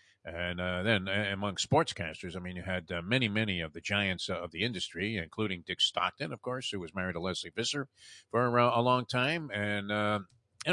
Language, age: English, 50-69